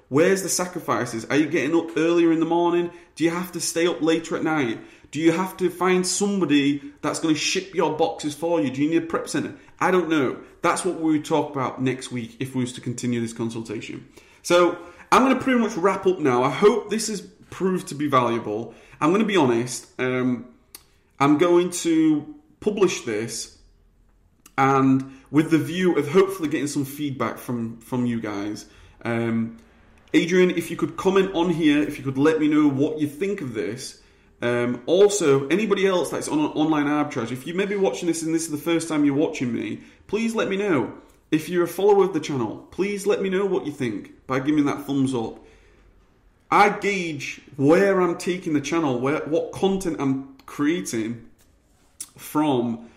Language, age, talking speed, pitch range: English, 30-49, 200 wpm, 125-175 Hz